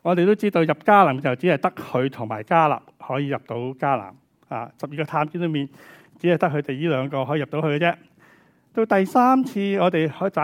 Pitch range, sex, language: 140-190 Hz, male, Chinese